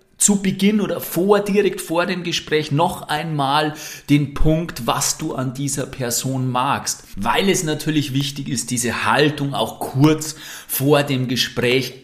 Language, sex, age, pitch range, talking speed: German, male, 30-49, 125-160 Hz, 150 wpm